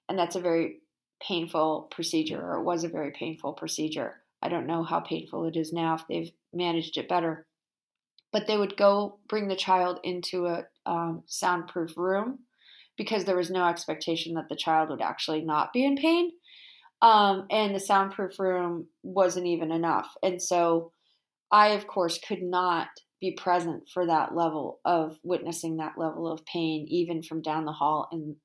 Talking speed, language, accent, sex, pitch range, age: 175 wpm, English, American, female, 160-190 Hz, 20-39